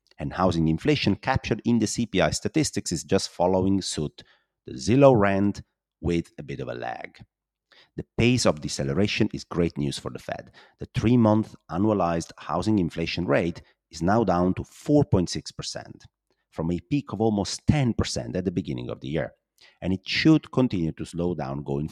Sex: male